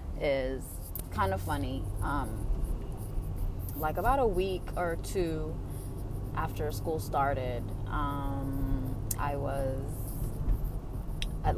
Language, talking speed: Amharic, 95 wpm